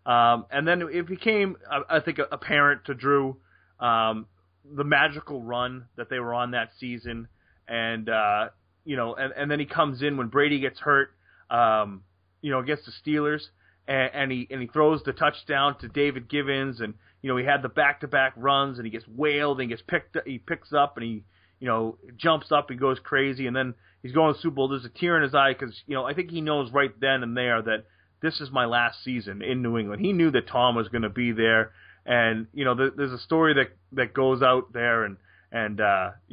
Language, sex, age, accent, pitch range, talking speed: English, male, 30-49, American, 115-150 Hz, 225 wpm